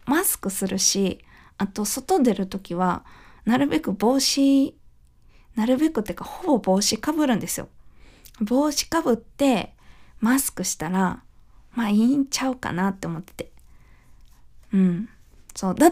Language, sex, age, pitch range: Japanese, female, 20-39, 190-265 Hz